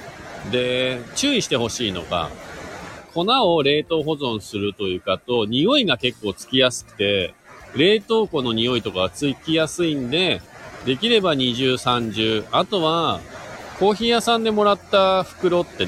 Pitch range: 110-180 Hz